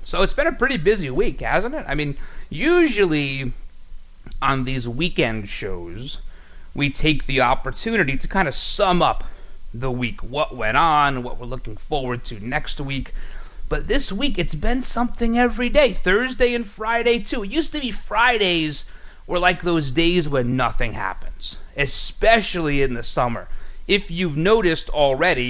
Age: 30-49